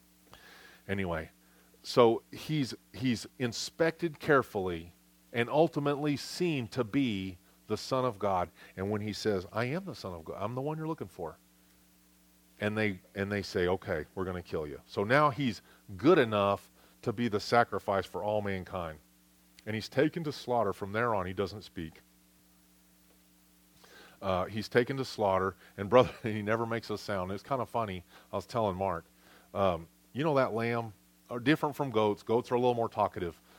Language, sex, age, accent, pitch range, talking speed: English, male, 40-59, American, 85-135 Hz, 175 wpm